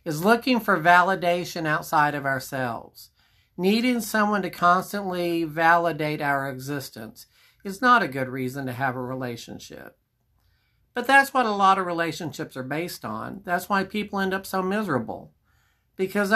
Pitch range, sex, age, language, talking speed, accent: 145-220 Hz, male, 50-69, English, 150 wpm, American